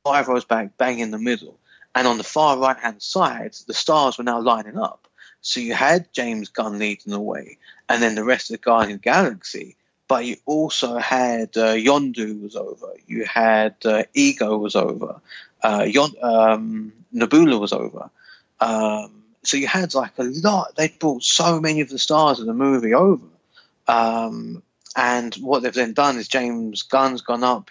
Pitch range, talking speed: 110-140 Hz, 180 wpm